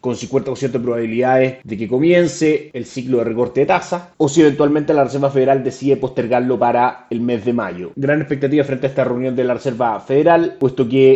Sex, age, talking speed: male, 30-49, 205 wpm